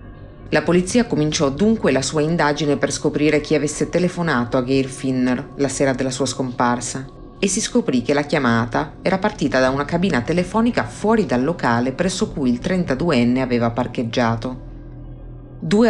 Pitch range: 130-165 Hz